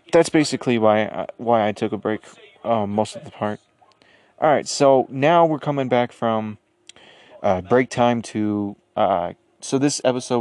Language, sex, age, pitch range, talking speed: English, male, 20-39, 105-115 Hz, 175 wpm